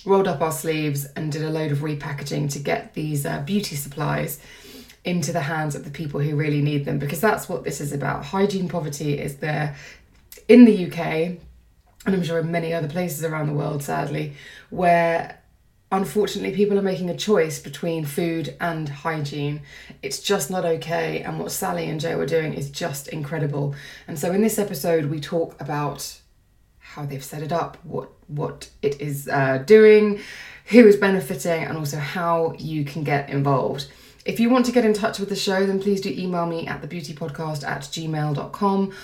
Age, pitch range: 20-39, 145-185 Hz